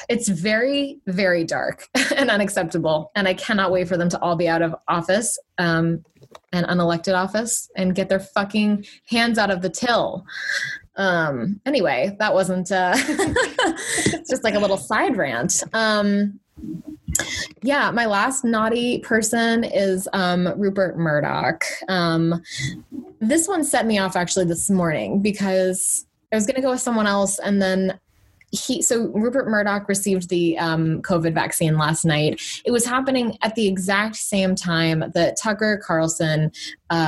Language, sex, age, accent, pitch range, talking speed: English, female, 20-39, American, 170-220 Hz, 155 wpm